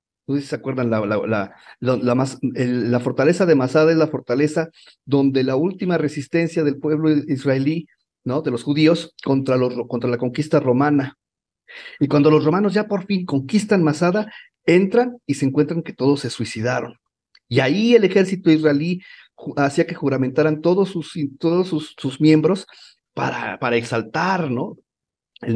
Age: 40-59